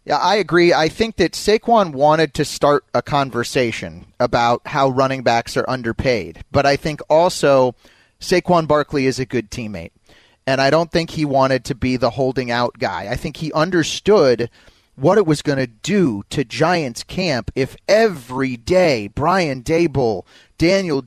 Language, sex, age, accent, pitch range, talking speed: English, male, 30-49, American, 130-175 Hz, 170 wpm